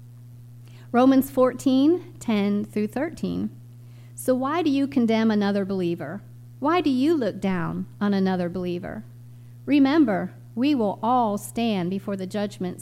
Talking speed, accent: 130 wpm, American